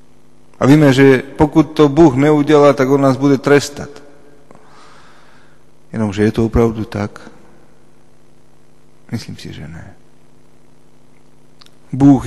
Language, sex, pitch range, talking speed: Slovak, male, 110-135 Hz, 110 wpm